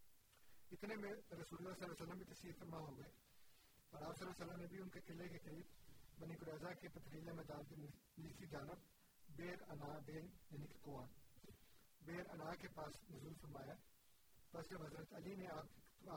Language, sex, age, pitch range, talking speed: Urdu, male, 40-59, 150-175 Hz, 65 wpm